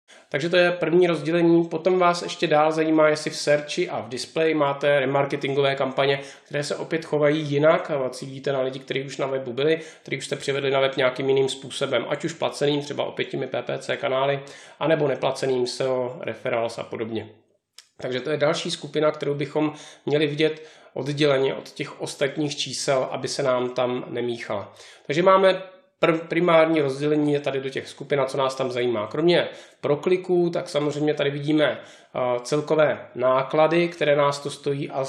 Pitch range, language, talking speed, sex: 130-150 Hz, Czech, 175 wpm, male